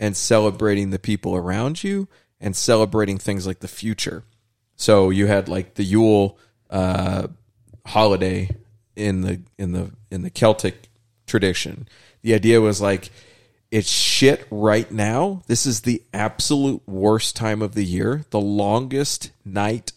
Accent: American